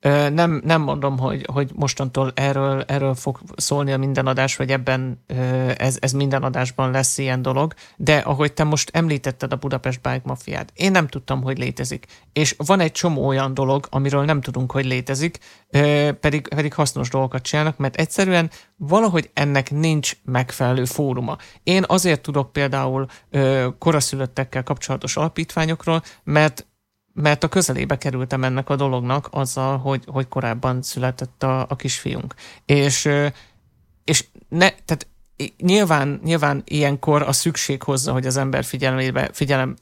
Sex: male